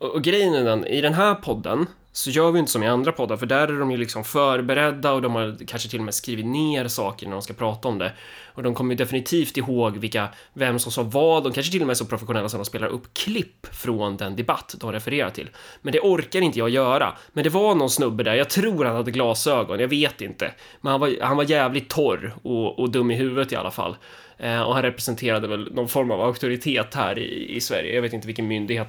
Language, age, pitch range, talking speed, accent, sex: Swedish, 20-39, 110-135 Hz, 250 wpm, native, male